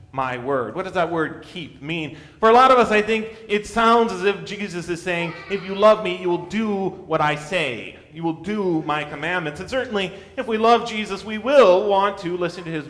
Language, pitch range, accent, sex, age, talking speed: English, 140-215 Hz, American, male, 30-49, 235 wpm